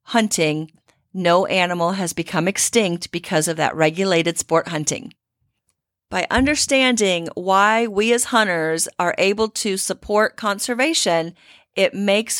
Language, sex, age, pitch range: English, female, 40-59, 175-230 Hz